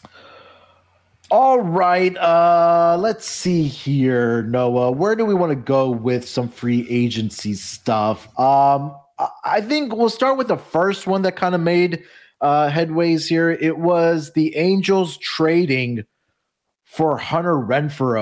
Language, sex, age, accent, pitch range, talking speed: English, male, 30-49, American, 110-155 Hz, 135 wpm